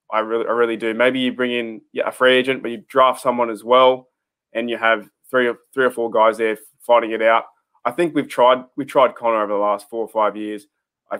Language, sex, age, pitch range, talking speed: English, male, 20-39, 110-125 Hz, 250 wpm